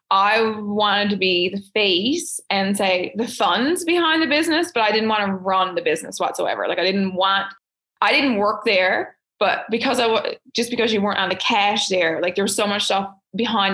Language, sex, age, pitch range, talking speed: English, female, 20-39, 195-235 Hz, 215 wpm